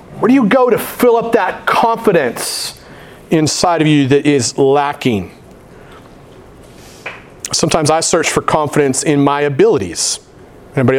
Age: 40-59